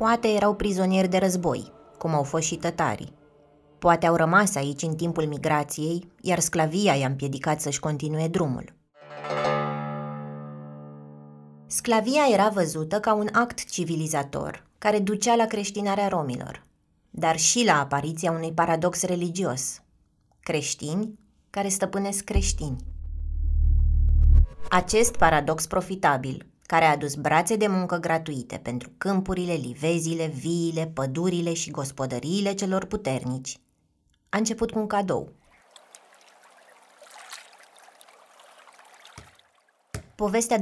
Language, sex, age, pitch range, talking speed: Romanian, female, 20-39, 135-195 Hz, 105 wpm